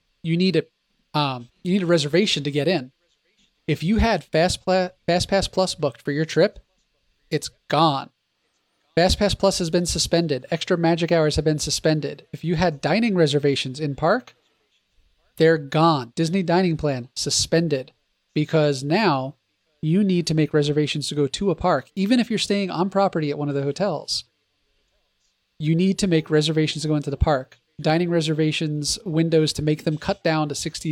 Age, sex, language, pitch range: 30-49, male, English, 145-175 Hz